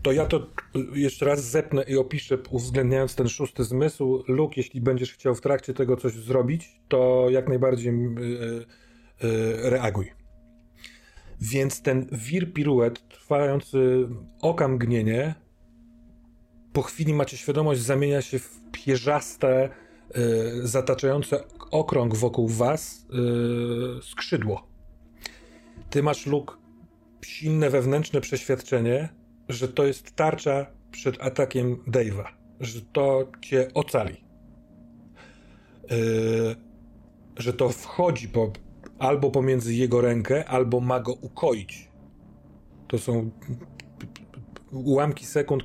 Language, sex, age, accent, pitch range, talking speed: Polish, male, 40-59, native, 115-135 Hz, 110 wpm